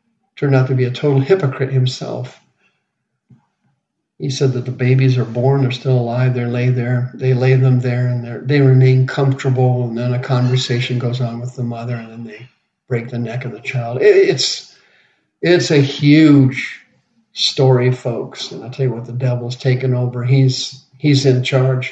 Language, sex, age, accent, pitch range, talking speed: English, male, 50-69, American, 125-140 Hz, 180 wpm